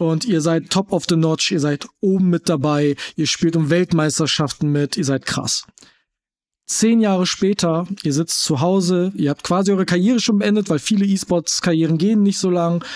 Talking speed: 190 wpm